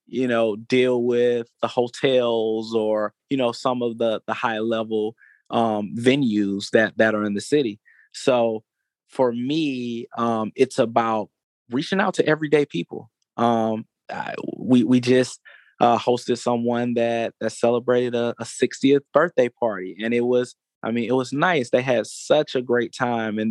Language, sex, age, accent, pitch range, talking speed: English, male, 20-39, American, 110-125 Hz, 165 wpm